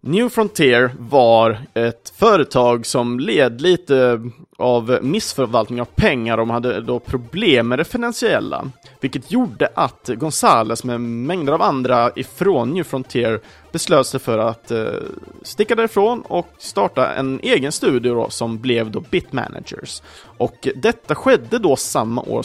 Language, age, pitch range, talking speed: Swedish, 30-49, 115-160 Hz, 140 wpm